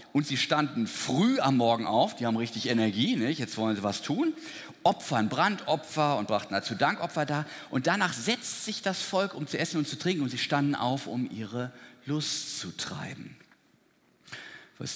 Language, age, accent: German, 50-69, German